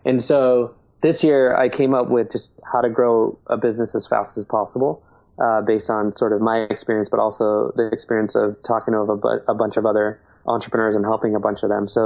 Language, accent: English, American